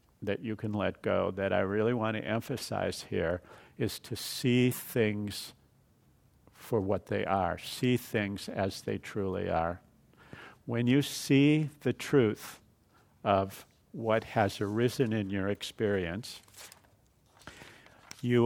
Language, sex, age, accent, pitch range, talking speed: English, male, 50-69, American, 100-120 Hz, 125 wpm